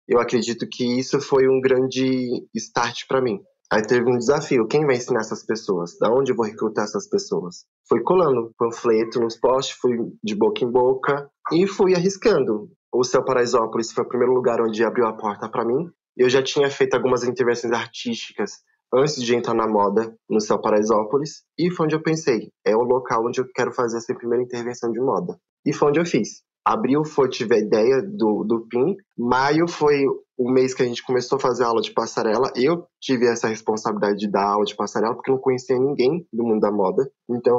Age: 20-39